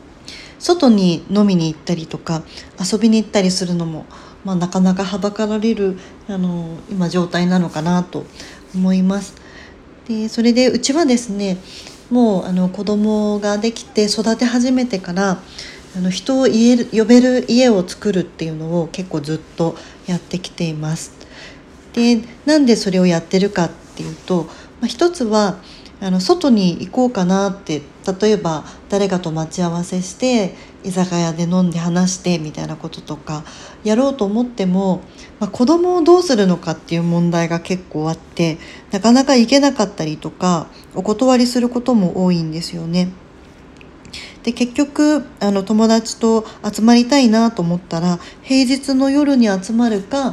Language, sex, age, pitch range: Japanese, female, 40-59, 175-230 Hz